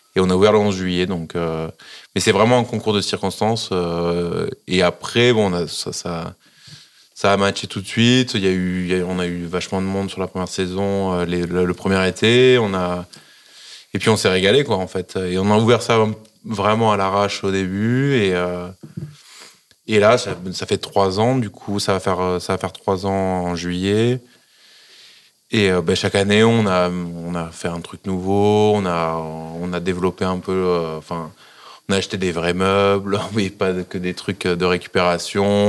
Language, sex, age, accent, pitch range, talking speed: French, male, 20-39, French, 90-105 Hz, 215 wpm